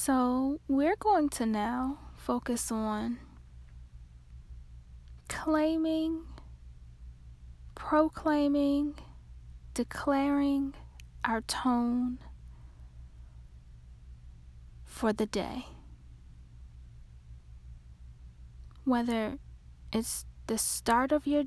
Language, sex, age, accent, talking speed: English, female, 10-29, American, 60 wpm